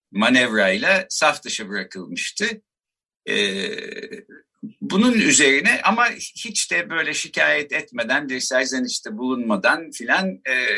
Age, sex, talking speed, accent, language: 60-79, male, 85 wpm, native, Turkish